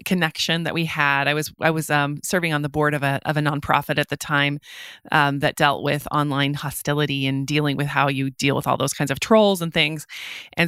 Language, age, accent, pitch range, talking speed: English, 30-49, American, 150-180 Hz, 235 wpm